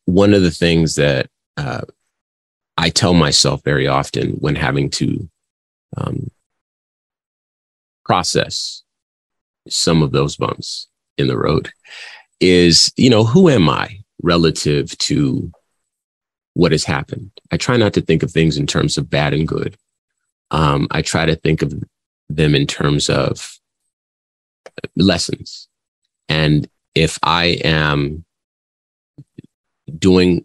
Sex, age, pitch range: male, 30-49, 75-85 Hz